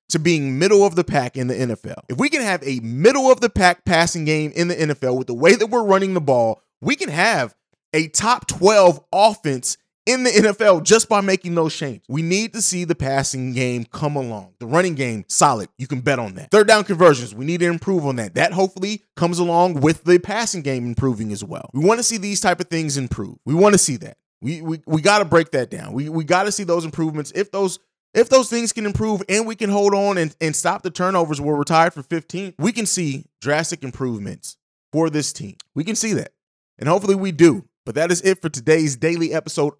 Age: 30-49